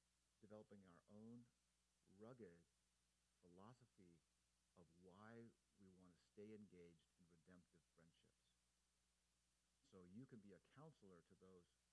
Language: English